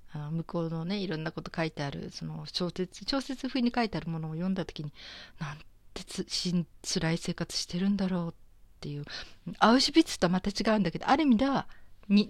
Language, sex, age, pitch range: Japanese, female, 40-59, 155-195 Hz